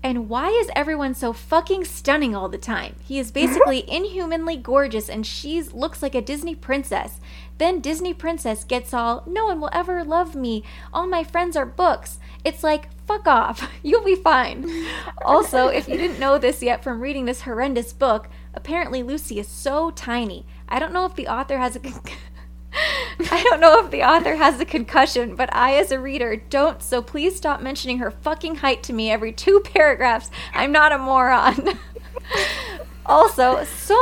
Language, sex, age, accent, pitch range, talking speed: English, female, 20-39, American, 250-330 Hz, 180 wpm